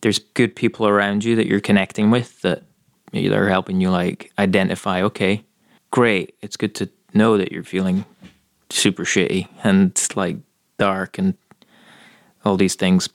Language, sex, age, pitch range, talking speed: English, male, 20-39, 95-120 Hz, 155 wpm